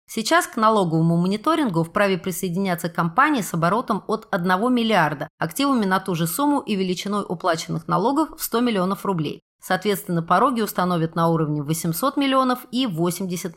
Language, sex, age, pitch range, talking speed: Russian, female, 30-49, 170-220 Hz, 150 wpm